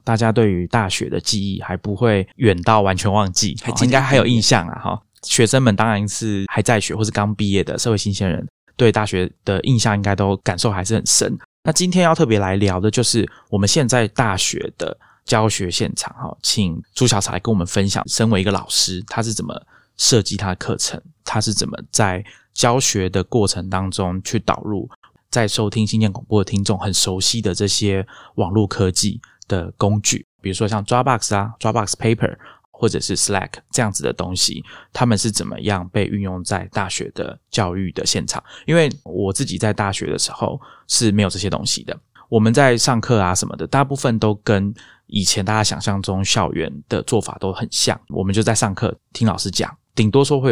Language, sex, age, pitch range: Chinese, male, 20-39, 95-115 Hz